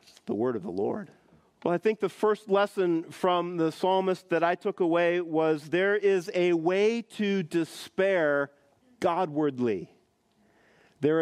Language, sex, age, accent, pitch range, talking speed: English, male, 40-59, American, 155-200 Hz, 145 wpm